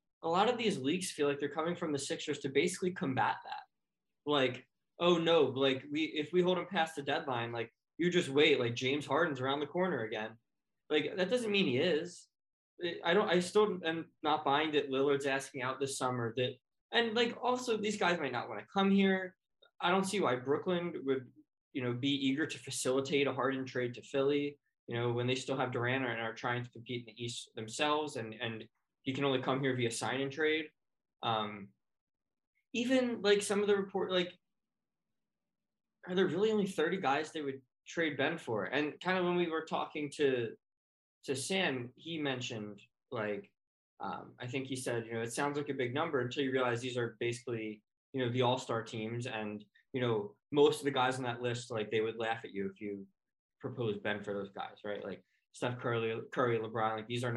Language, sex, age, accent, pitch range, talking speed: English, male, 20-39, American, 120-175 Hz, 210 wpm